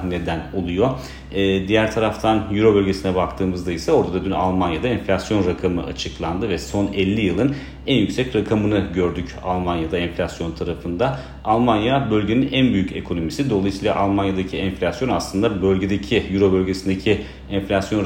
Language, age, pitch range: Turkish, 40-59, 85-100 Hz